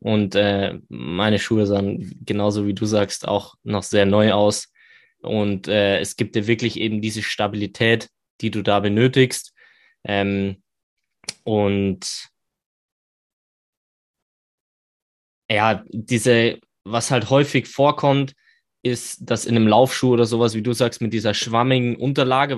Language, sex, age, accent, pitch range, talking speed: German, male, 20-39, German, 105-125 Hz, 130 wpm